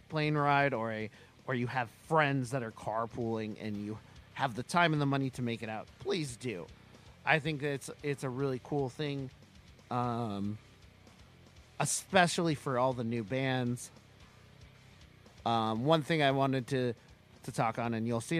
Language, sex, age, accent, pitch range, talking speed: English, male, 30-49, American, 110-145 Hz, 170 wpm